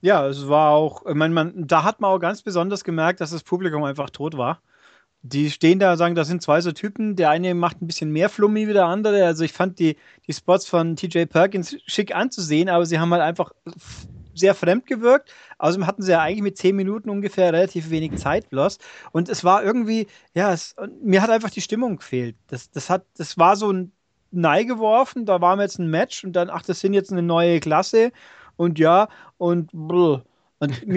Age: 30-49